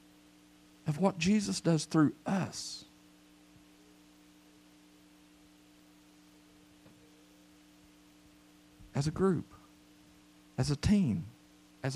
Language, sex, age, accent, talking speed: English, male, 50-69, American, 65 wpm